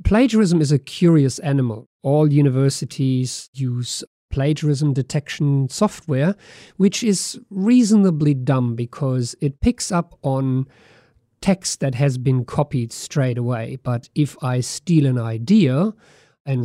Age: 50-69